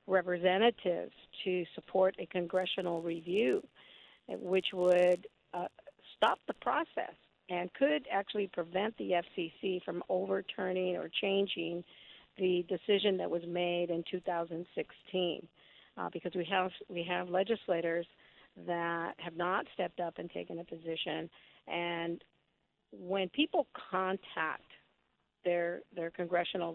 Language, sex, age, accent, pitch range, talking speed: English, female, 50-69, American, 170-190 Hz, 115 wpm